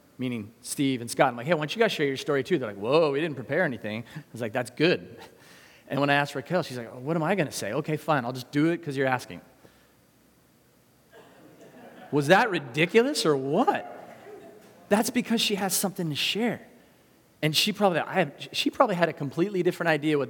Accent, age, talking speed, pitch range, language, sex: American, 30-49, 220 wpm, 130-170 Hz, English, male